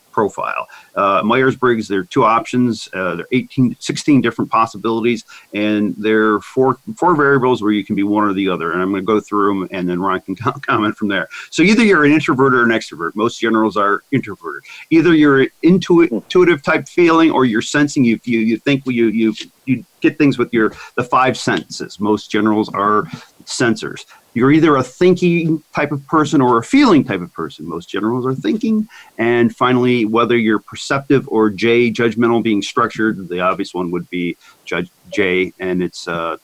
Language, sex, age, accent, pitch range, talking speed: English, male, 40-59, American, 105-140 Hz, 200 wpm